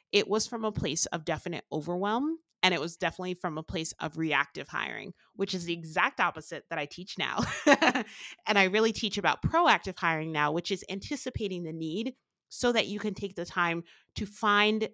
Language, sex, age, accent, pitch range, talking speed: English, female, 30-49, American, 155-205 Hz, 195 wpm